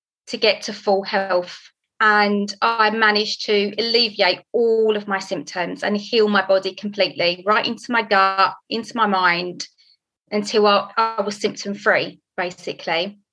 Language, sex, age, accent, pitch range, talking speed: English, female, 30-49, British, 195-225 Hz, 150 wpm